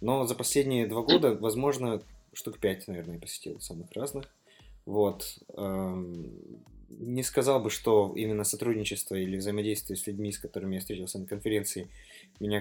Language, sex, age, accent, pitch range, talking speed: Russian, male, 20-39, native, 95-120 Hz, 145 wpm